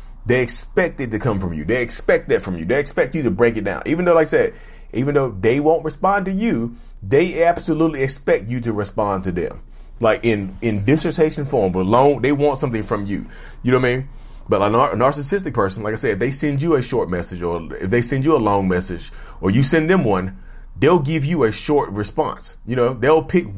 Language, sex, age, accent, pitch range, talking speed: English, male, 30-49, American, 100-145 Hz, 240 wpm